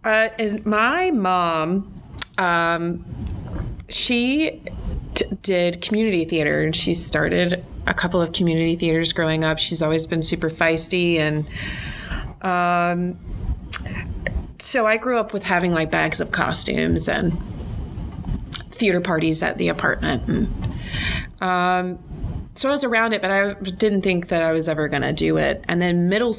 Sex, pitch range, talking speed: female, 165-215 Hz, 150 wpm